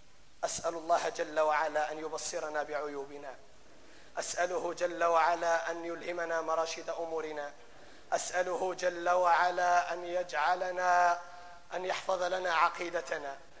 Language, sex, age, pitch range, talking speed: Arabic, male, 30-49, 165-185 Hz, 100 wpm